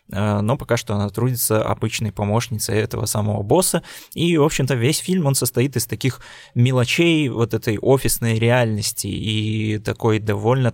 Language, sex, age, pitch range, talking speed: Russian, male, 20-39, 110-125 Hz, 150 wpm